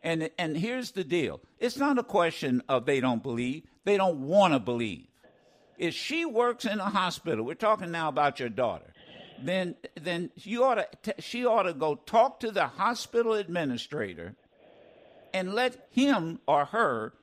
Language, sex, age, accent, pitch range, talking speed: English, male, 60-79, American, 160-250 Hz, 170 wpm